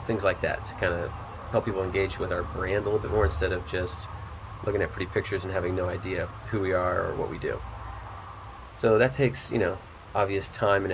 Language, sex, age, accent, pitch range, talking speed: English, male, 30-49, American, 95-110 Hz, 230 wpm